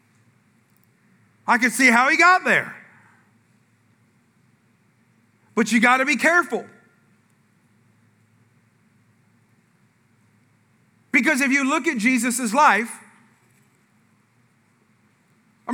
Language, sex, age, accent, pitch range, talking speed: English, male, 40-59, American, 235-320 Hz, 75 wpm